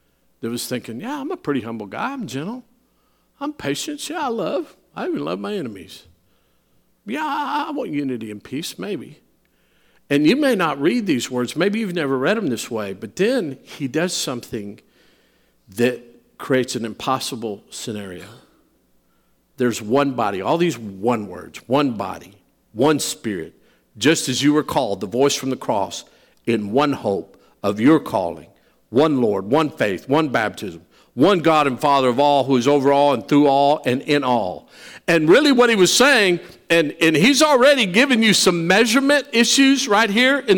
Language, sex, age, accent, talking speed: English, male, 50-69, American, 175 wpm